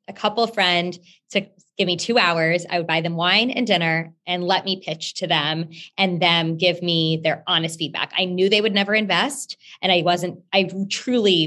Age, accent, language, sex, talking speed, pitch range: 20-39, American, English, female, 205 wpm, 170-200 Hz